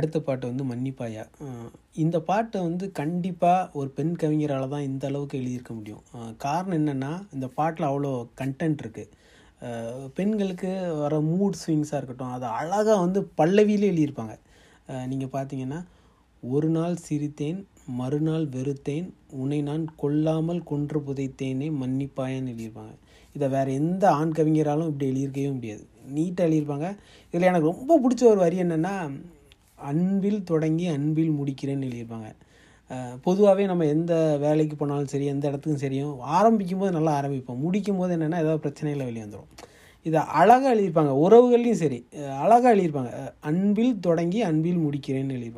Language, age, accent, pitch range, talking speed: Tamil, 30-49, native, 135-180 Hz, 135 wpm